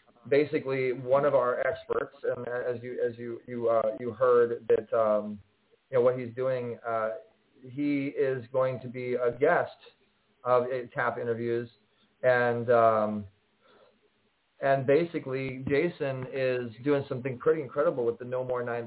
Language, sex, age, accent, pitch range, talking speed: English, male, 30-49, American, 115-140 Hz, 155 wpm